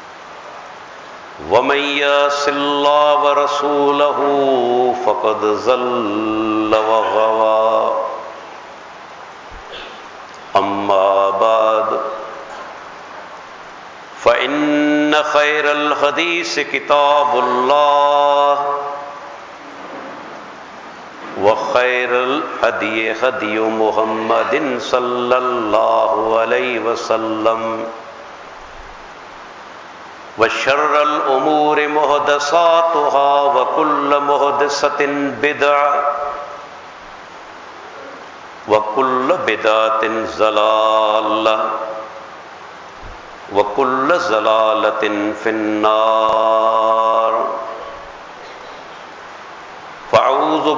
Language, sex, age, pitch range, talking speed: English, male, 60-79, 110-145 Hz, 45 wpm